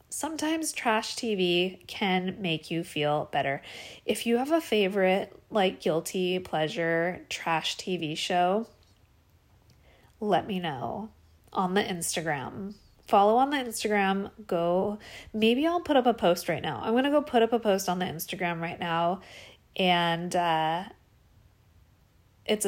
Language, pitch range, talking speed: English, 165-220 Hz, 145 wpm